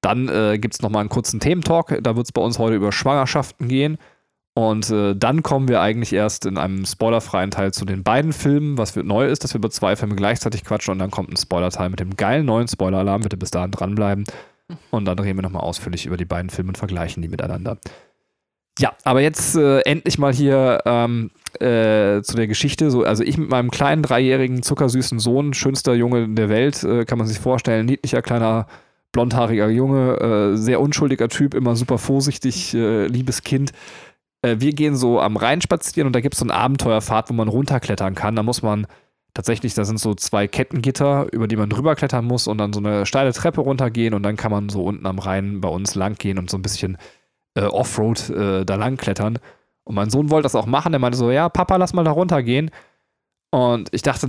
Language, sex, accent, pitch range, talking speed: German, male, German, 105-135 Hz, 215 wpm